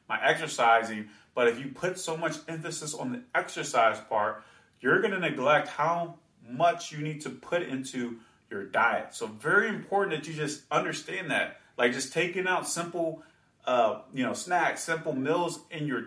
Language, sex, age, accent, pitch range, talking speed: English, male, 30-49, American, 150-185 Hz, 170 wpm